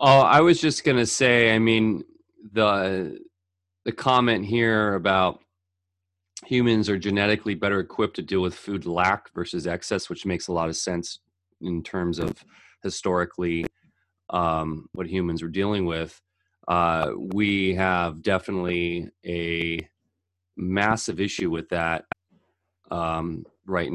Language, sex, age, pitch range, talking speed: English, male, 30-49, 85-105 Hz, 135 wpm